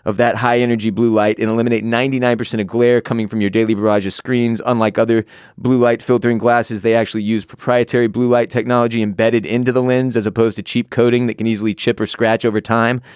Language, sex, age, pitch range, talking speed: English, male, 20-39, 110-125 Hz, 215 wpm